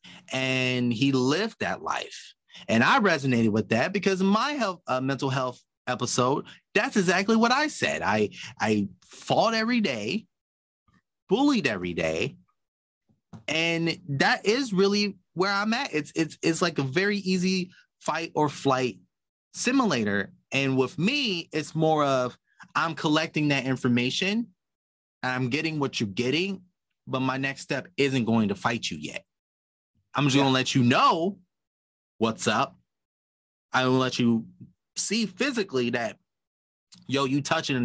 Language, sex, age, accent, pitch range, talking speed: English, male, 30-49, American, 120-185 Hz, 145 wpm